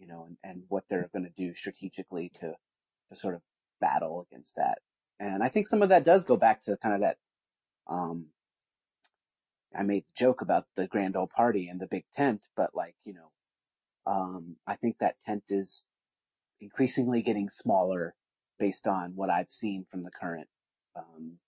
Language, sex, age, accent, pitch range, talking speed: English, male, 30-49, American, 95-125 Hz, 185 wpm